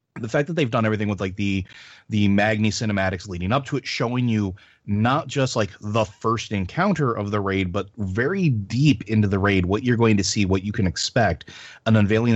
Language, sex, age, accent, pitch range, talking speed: English, male, 30-49, American, 95-110 Hz, 215 wpm